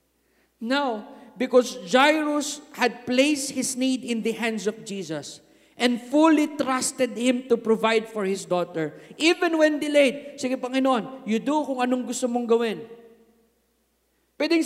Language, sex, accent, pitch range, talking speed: English, male, Filipino, 235-295 Hz, 140 wpm